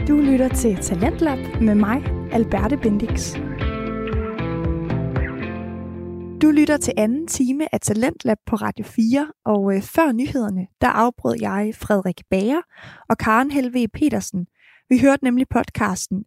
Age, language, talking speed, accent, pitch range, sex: 20-39, Danish, 125 wpm, native, 210-265 Hz, female